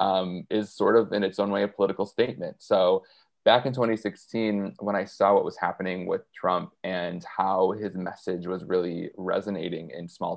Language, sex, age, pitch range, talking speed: English, male, 20-39, 95-110 Hz, 185 wpm